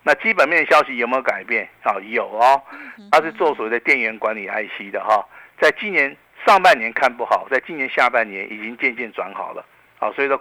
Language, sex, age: Chinese, male, 50-69